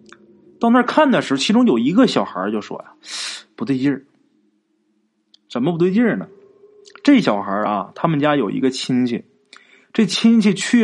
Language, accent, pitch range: Chinese, native, 145-245 Hz